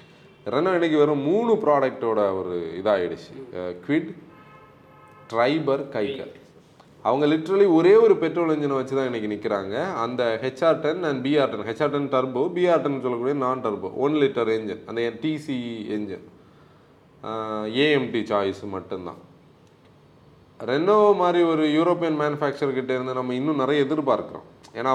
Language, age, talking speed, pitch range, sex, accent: Tamil, 30-49, 125 wpm, 130-165 Hz, male, native